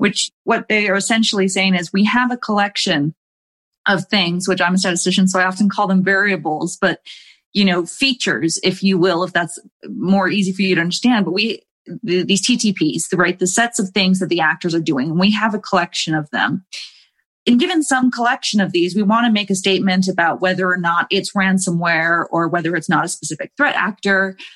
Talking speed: 210 wpm